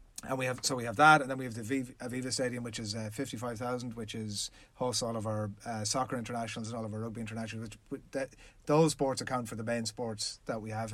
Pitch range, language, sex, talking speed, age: 110-130 Hz, English, male, 250 wpm, 30-49